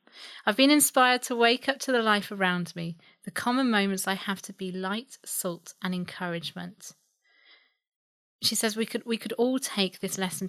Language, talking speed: English, 185 wpm